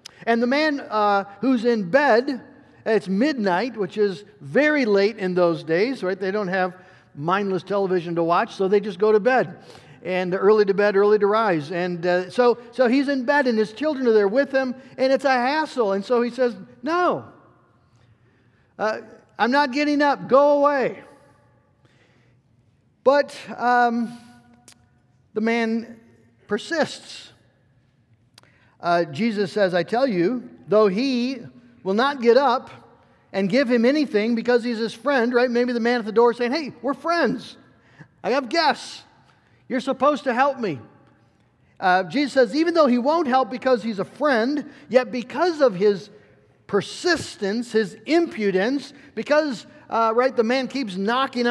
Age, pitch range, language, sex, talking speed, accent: 50-69, 175-255 Hz, English, male, 160 wpm, American